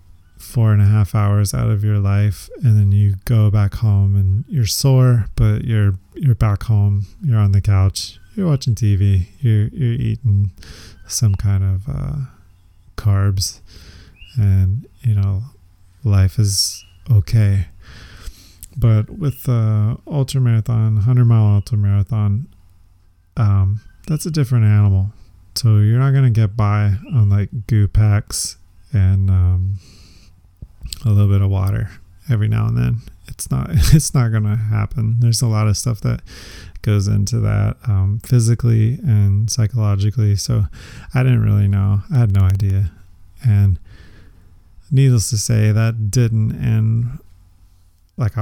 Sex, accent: male, American